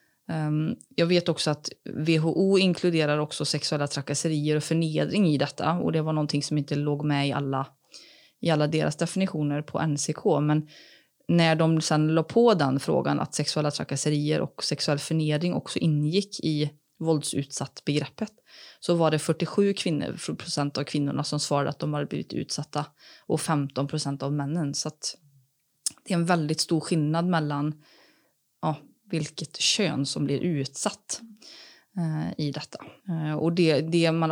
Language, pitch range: Swedish, 145-170 Hz